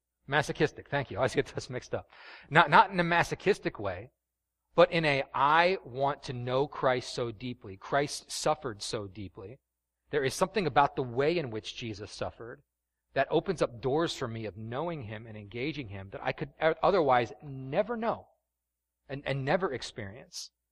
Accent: American